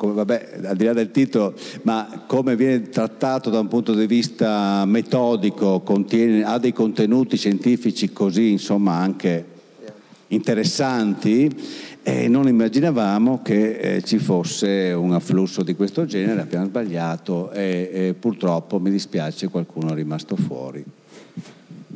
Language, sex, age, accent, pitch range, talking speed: Italian, male, 50-69, native, 95-120 Hz, 135 wpm